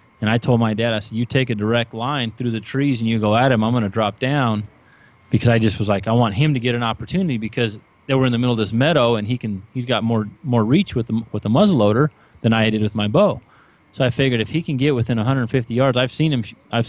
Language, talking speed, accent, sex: English, 280 wpm, American, male